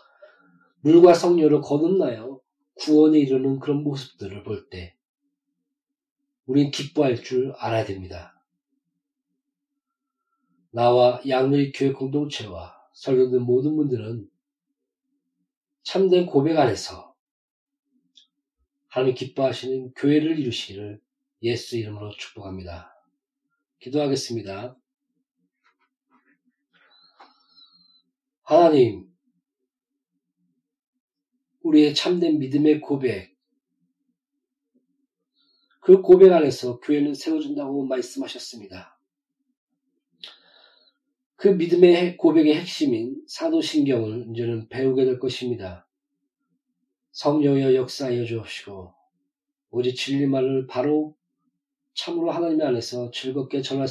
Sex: male